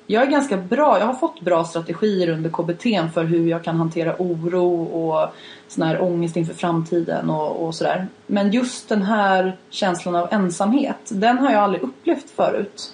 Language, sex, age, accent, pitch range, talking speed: English, female, 30-49, Swedish, 175-220 Hz, 180 wpm